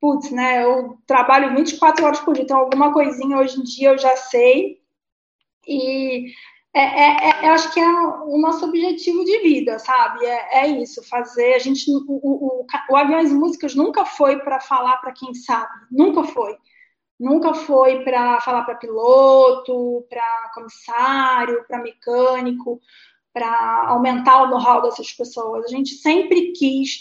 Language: Portuguese